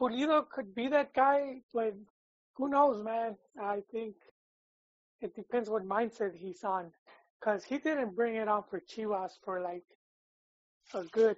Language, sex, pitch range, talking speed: English, male, 195-235 Hz, 155 wpm